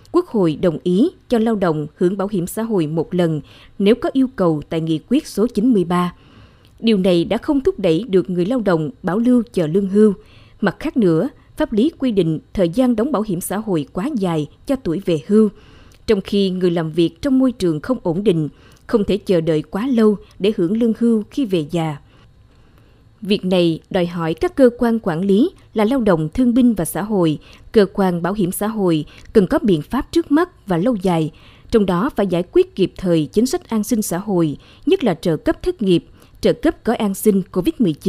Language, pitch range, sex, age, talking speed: Vietnamese, 170-230 Hz, female, 20-39, 220 wpm